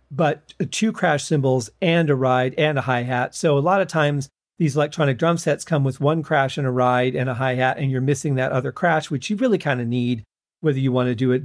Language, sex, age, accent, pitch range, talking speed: English, male, 40-59, American, 130-160 Hz, 245 wpm